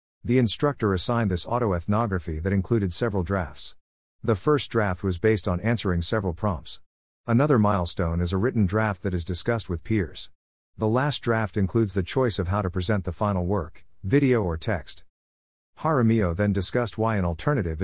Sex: male